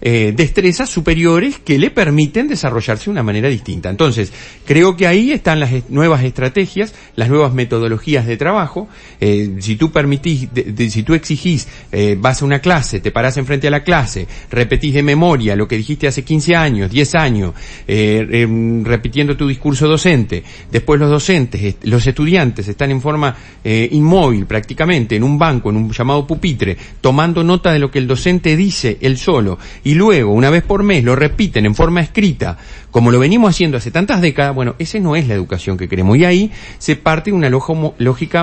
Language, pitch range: Spanish, 120-180 Hz